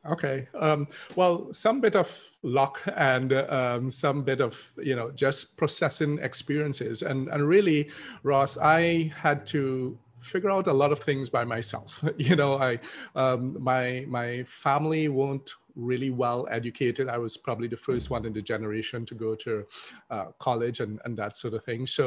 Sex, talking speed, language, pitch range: male, 175 wpm, English, 120-145 Hz